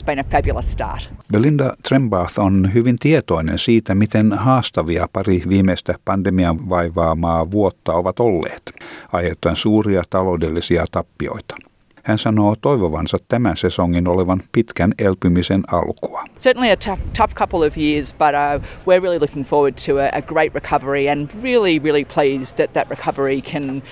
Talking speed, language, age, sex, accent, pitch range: 130 wpm, Finnish, 50-69, male, native, 90-140 Hz